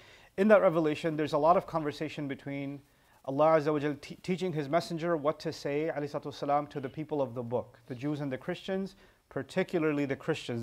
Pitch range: 140-170 Hz